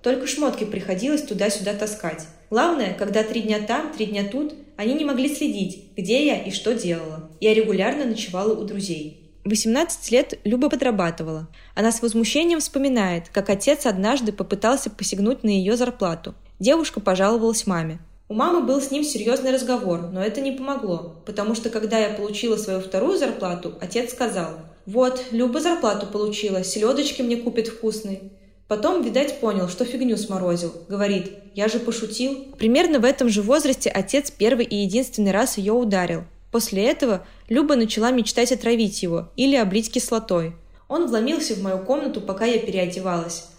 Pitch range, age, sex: 190-255 Hz, 20-39, female